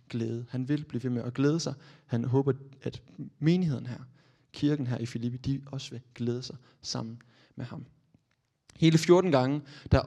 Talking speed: 180 wpm